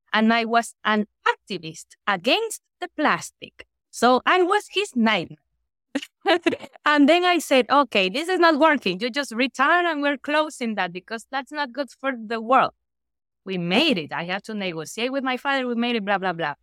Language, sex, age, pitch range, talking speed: English, female, 20-39, 195-255 Hz, 190 wpm